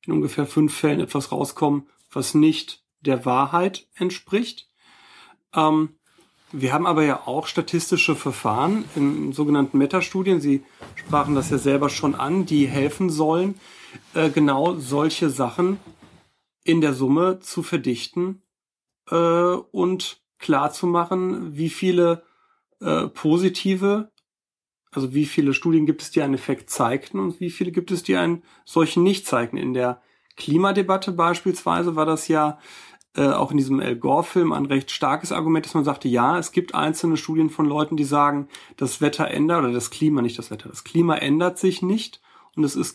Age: 40-59